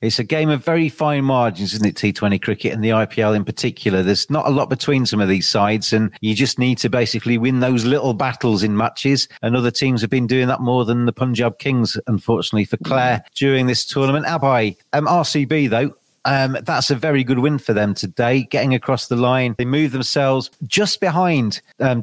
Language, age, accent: English, 40-59, British